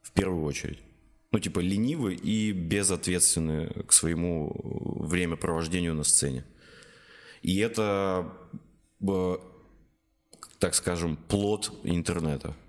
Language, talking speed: Russian, 90 wpm